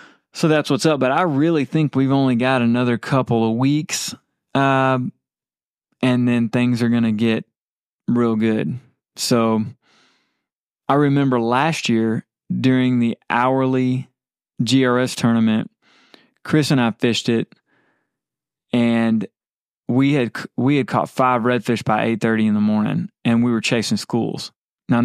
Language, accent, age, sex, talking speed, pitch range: English, American, 20-39, male, 140 wpm, 115-130 Hz